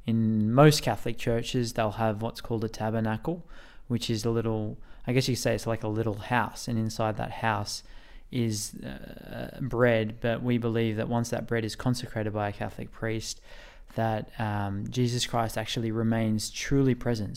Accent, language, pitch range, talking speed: Australian, English, 110-120 Hz, 175 wpm